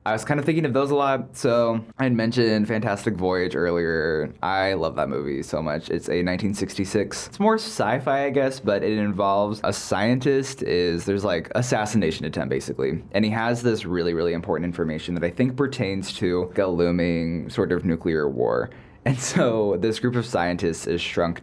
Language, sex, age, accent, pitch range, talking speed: English, male, 20-39, American, 90-120 Hz, 190 wpm